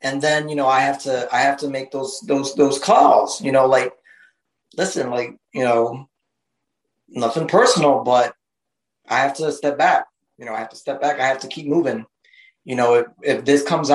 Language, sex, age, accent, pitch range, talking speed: English, male, 20-39, American, 140-185 Hz, 205 wpm